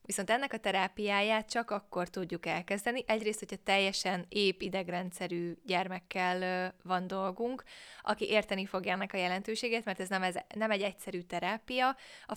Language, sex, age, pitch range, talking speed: Hungarian, female, 20-39, 185-220 Hz, 140 wpm